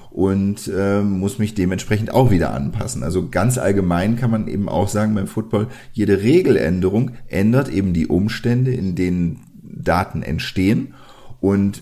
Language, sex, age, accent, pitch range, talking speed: German, male, 40-59, German, 90-115 Hz, 145 wpm